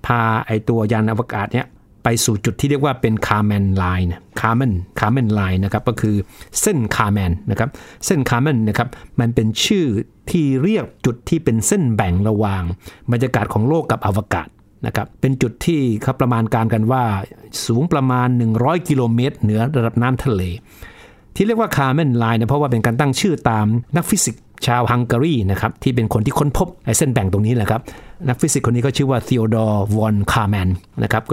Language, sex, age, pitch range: Thai, male, 60-79, 110-130 Hz